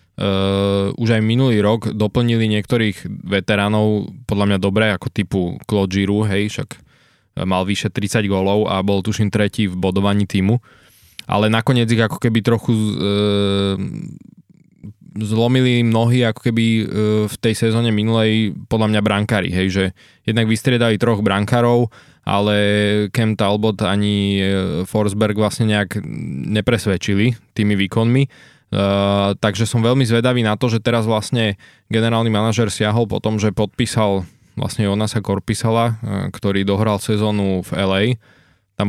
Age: 20-39